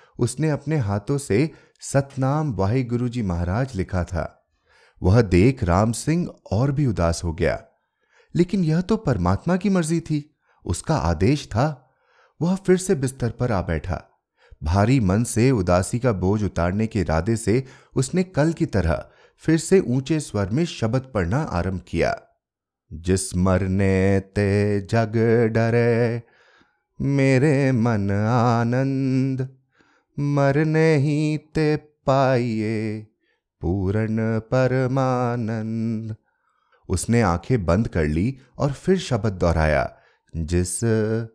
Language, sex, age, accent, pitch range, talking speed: Hindi, male, 30-49, native, 100-145 Hz, 120 wpm